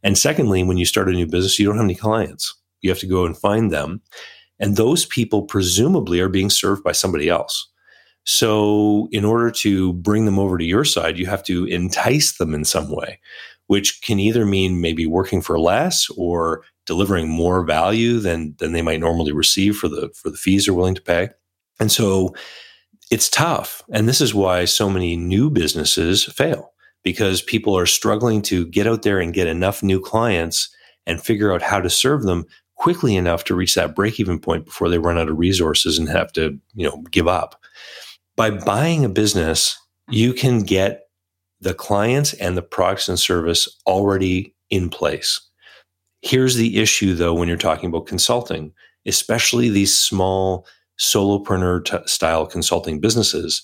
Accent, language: American, English